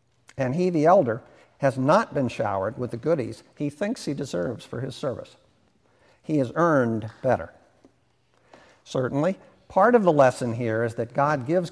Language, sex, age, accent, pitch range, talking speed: English, male, 60-79, American, 125-180 Hz, 165 wpm